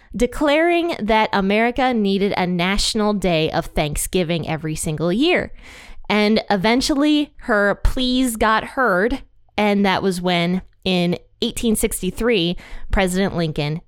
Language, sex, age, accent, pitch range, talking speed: English, female, 20-39, American, 180-240 Hz, 110 wpm